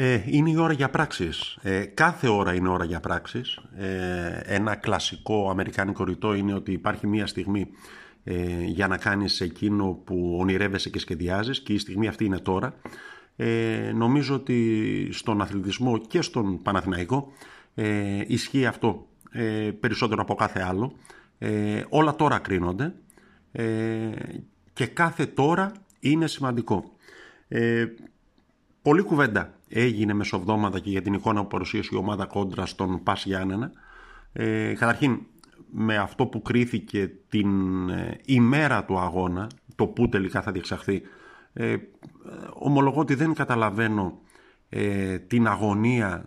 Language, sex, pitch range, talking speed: Greek, male, 95-120 Hz, 135 wpm